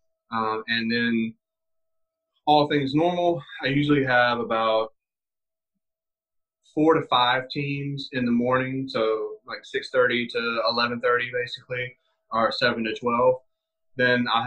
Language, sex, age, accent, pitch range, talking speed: English, male, 20-39, American, 115-150 Hz, 120 wpm